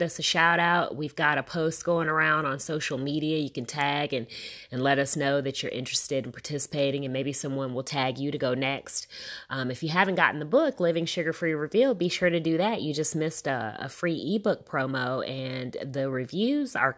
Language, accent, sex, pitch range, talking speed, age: English, American, female, 130-170 Hz, 225 wpm, 30-49